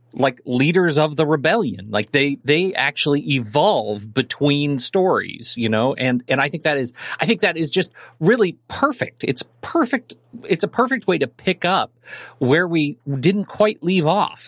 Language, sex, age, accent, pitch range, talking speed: English, male, 40-59, American, 120-160 Hz, 175 wpm